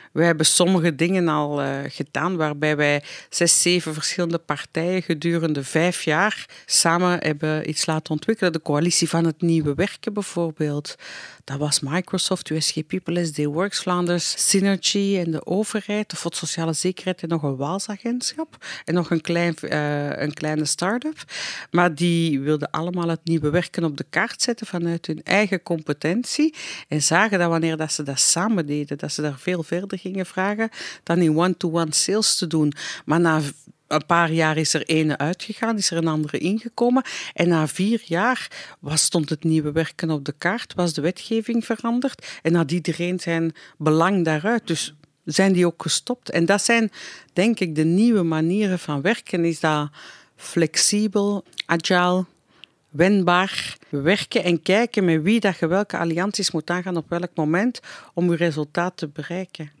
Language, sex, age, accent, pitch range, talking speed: English, female, 50-69, Dutch, 155-190 Hz, 165 wpm